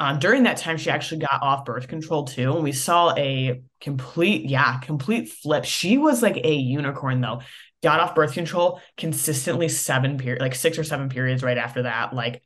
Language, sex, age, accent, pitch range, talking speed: English, male, 20-39, American, 125-150 Hz, 200 wpm